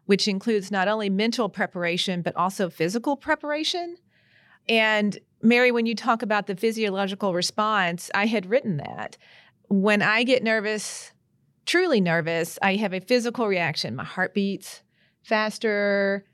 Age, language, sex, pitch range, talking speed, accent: 40-59, English, female, 190-235 Hz, 140 wpm, American